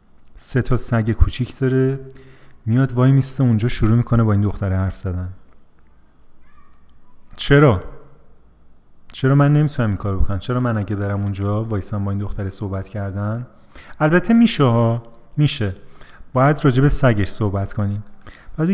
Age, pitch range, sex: 30-49, 100-135 Hz, male